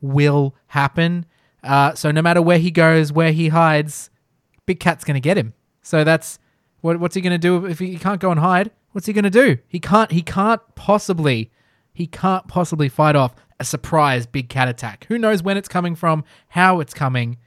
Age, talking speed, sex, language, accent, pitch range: 20-39, 205 wpm, male, English, Australian, 150-215 Hz